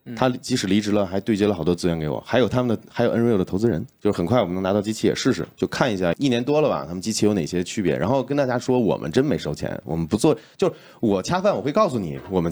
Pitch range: 85-115 Hz